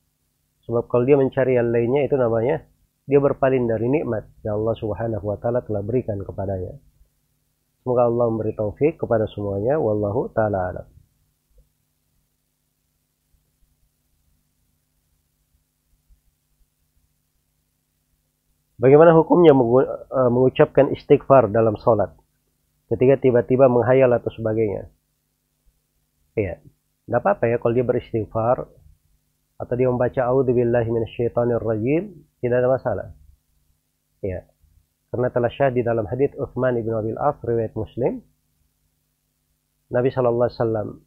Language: Indonesian